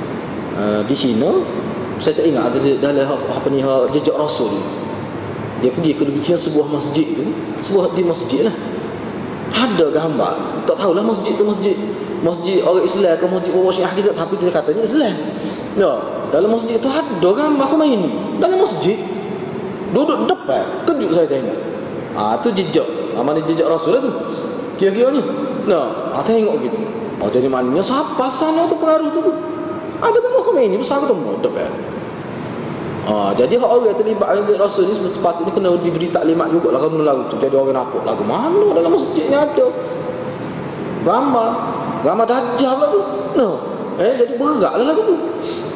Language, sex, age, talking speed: Malay, male, 20-39, 155 wpm